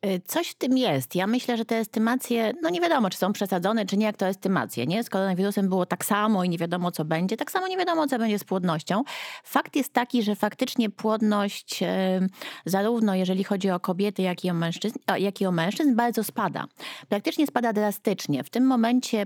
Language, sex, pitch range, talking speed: Polish, female, 190-245 Hz, 205 wpm